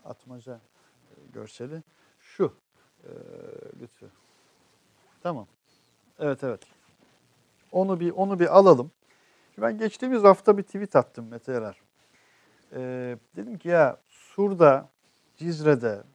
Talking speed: 95 wpm